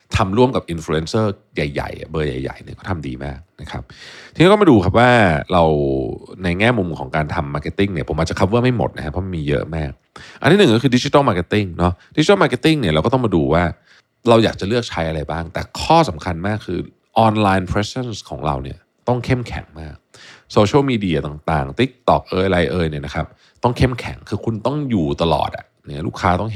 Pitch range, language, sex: 80-115 Hz, Thai, male